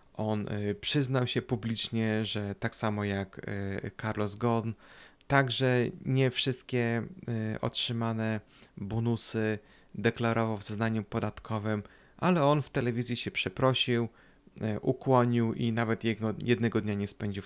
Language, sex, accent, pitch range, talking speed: Polish, male, native, 105-125 Hz, 115 wpm